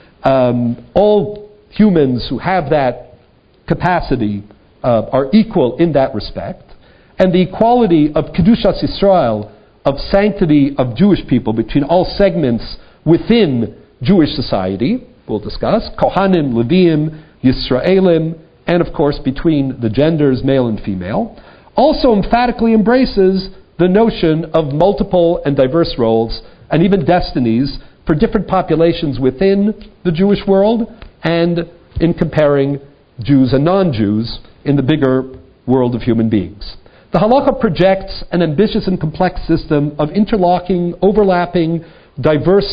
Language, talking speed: English, 125 wpm